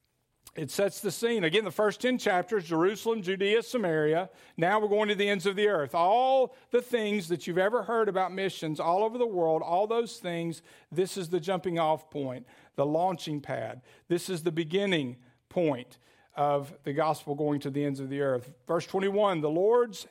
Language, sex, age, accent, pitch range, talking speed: English, male, 50-69, American, 150-200 Hz, 195 wpm